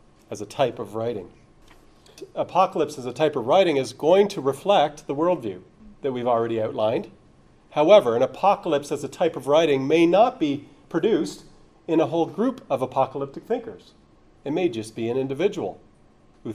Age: 40-59